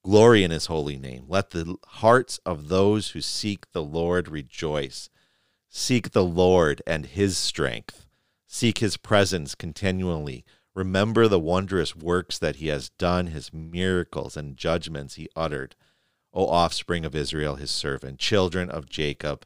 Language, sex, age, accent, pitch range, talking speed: English, male, 40-59, American, 75-95 Hz, 150 wpm